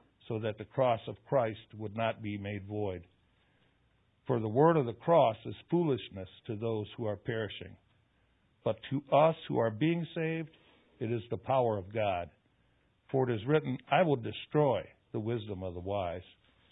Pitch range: 110-140 Hz